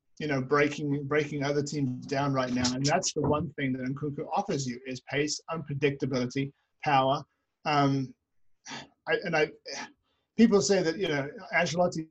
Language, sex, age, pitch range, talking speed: English, male, 30-49, 140-155 Hz, 160 wpm